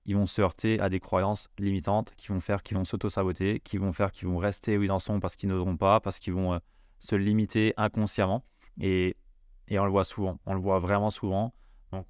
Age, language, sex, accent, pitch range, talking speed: 20-39, French, male, French, 95-110 Hz, 235 wpm